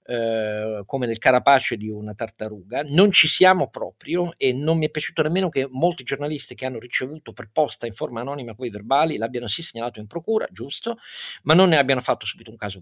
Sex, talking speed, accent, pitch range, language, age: male, 205 wpm, native, 115-155 Hz, Italian, 50-69